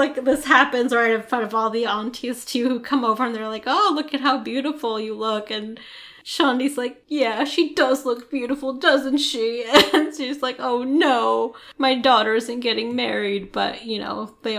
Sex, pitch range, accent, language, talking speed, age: female, 220-260 Hz, American, English, 200 wpm, 10-29